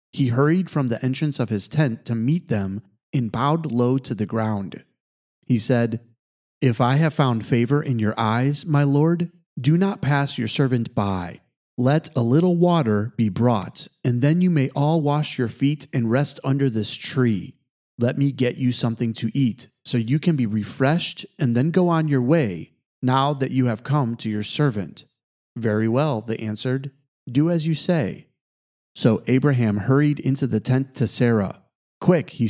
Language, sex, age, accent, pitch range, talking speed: English, male, 30-49, American, 115-150 Hz, 180 wpm